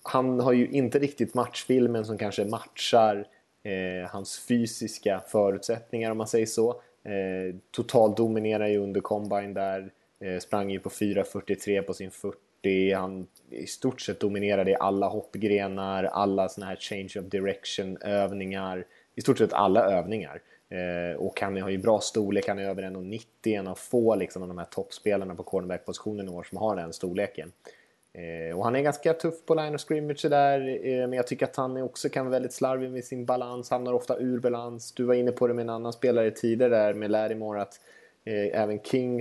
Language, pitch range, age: Swedish, 95-120 Hz, 20-39